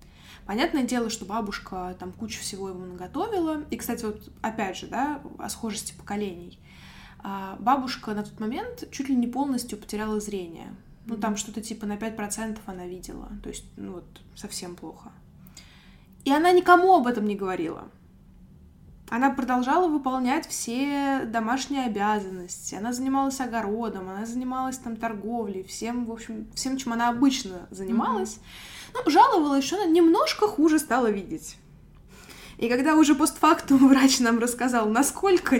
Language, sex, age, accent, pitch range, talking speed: Russian, female, 20-39, native, 205-275 Hz, 145 wpm